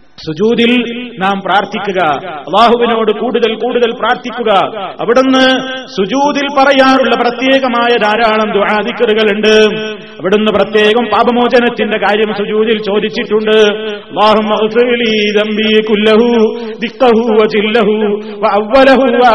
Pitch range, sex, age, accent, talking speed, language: 215-240 Hz, male, 30-49, native, 55 wpm, Malayalam